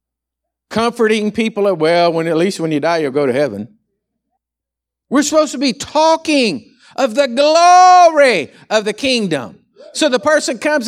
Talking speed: 160 wpm